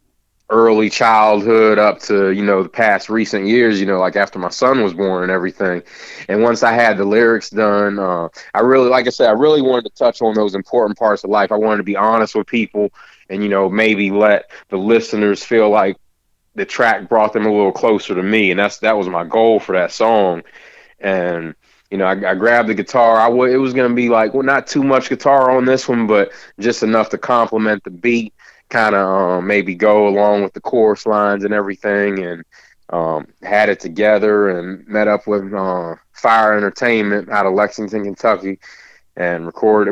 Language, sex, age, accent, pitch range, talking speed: English, male, 30-49, American, 95-110 Hz, 205 wpm